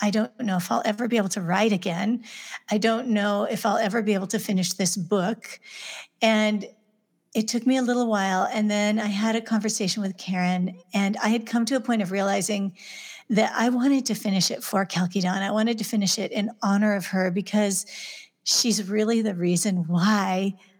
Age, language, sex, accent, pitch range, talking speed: 40-59, English, female, American, 185-220 Hz, 200 wpm